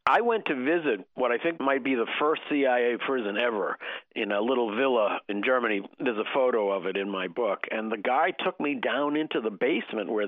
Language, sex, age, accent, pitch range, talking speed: English, male, 50-69, American, 125-160 Hz, 220 wpm